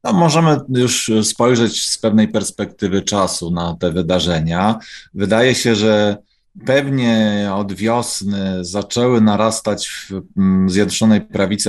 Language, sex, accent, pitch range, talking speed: Polish, male, native, 95-120 Hz, 115 wpm